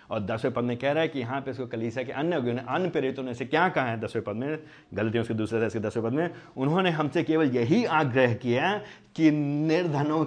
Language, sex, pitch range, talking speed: Hindi, male, 130-210 Hz, 150 wpm